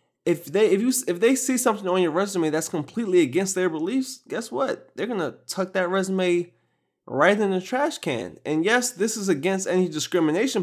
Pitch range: 130-180 Hz